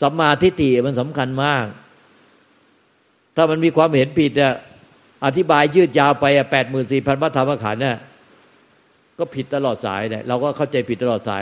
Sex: male